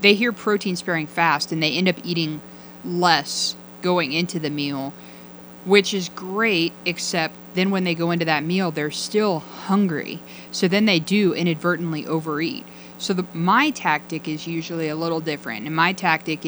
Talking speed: 170 wpm